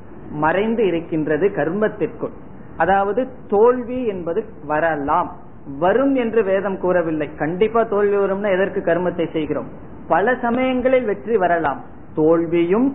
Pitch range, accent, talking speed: 160-205 Hz, native, 100 wpm